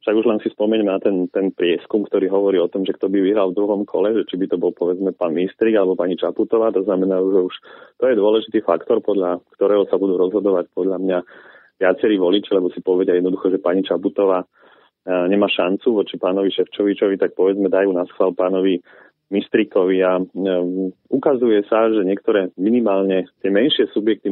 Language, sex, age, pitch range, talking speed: Slovak, male, 30-49, 95-100 Hz, 190 wpm